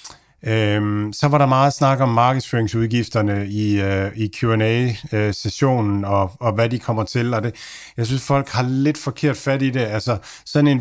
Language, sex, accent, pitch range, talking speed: Danish, male, native, 105-125 Hz, 185 wpm